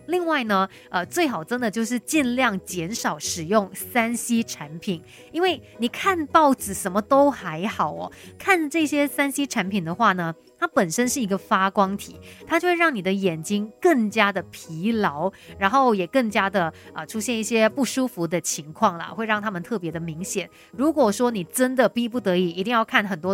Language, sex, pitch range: Chinese, female, 185-255 Hz